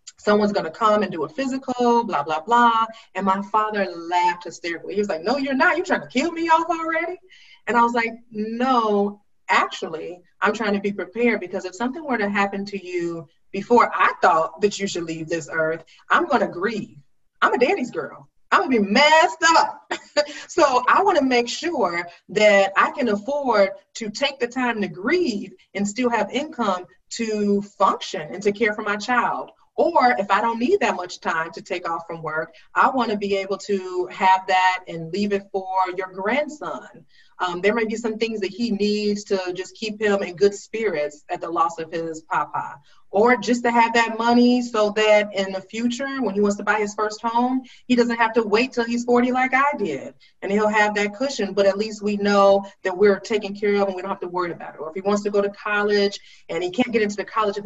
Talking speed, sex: 225 wpm, female